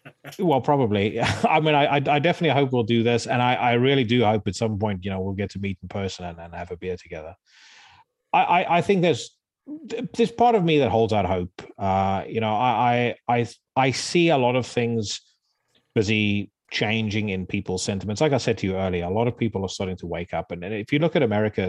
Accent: British